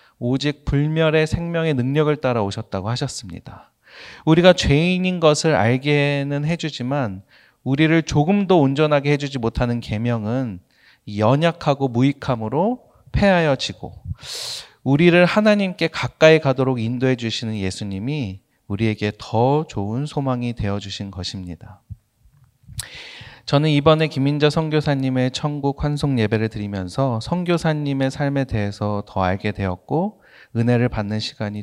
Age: 30-49